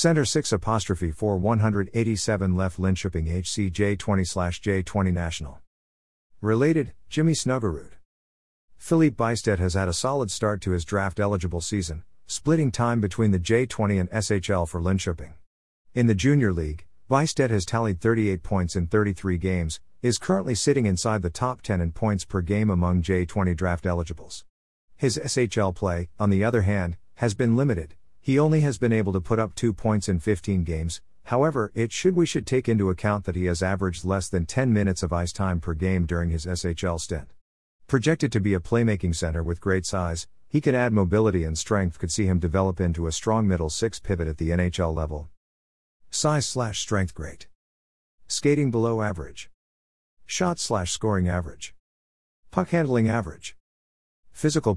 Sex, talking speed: male, 165 wpm